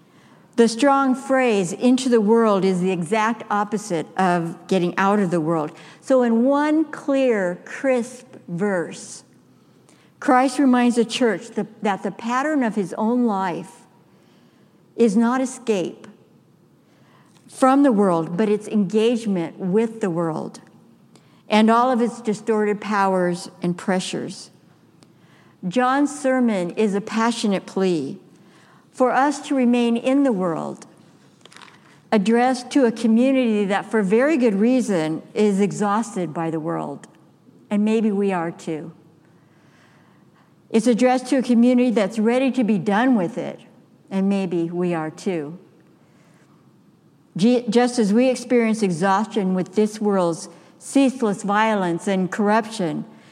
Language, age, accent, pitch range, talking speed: English, 60-79, American, 185-245 Hz, 130 wpm